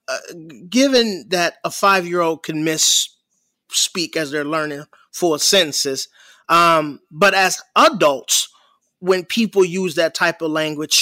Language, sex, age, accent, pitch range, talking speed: English, male, 30-49, American, 165-210 Hz, 120 wpm